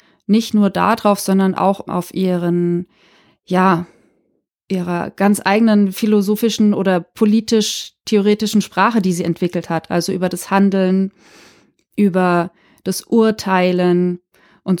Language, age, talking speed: German, 20-39, 110 wpm